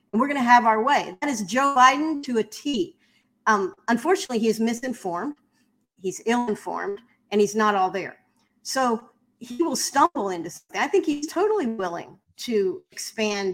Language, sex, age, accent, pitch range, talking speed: English, female, 40-59, American, 205-260 Hz, 175 wpm